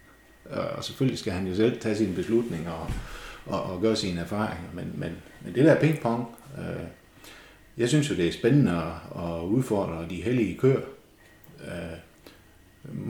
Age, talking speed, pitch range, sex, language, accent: 60-79, 160 wpm, 90-120 Hz, male, Danish, native